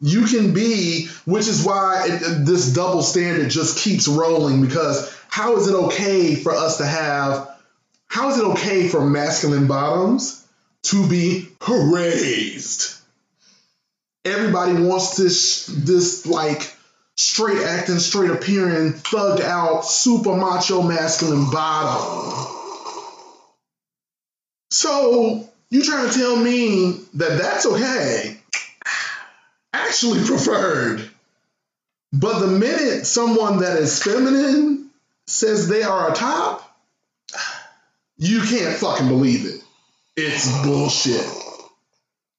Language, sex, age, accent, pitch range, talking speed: English, male, 20-39, American, 160-220 Hz, 110 wpm